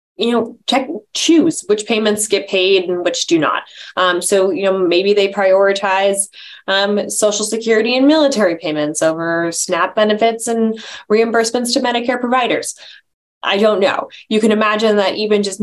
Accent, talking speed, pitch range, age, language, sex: American, 160 wpm, 180-220 Hz, 20-39, English, female